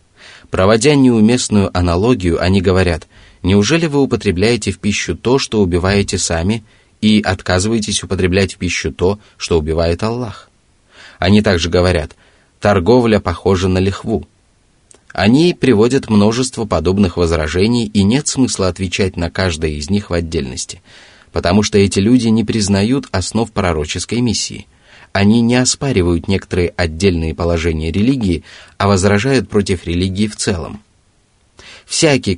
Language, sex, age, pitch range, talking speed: Russian, male, 20-39, 90-110 Hz, 125 wpm